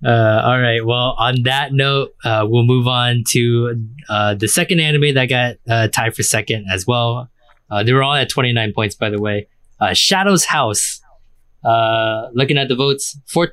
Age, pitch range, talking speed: 20-39, 100-125 Hz, 190 wpm